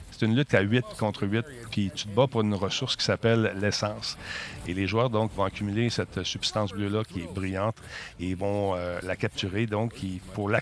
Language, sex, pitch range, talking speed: French, male, 100-115 Hz, 215 wpm